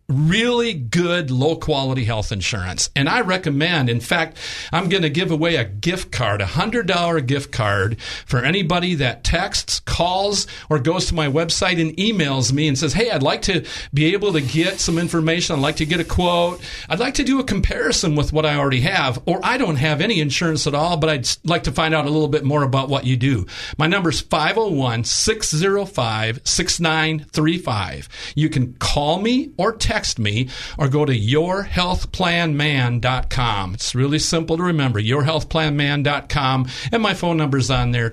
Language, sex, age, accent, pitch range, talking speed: English, male, 40-59, American, 130-170 Hz, 180 wpm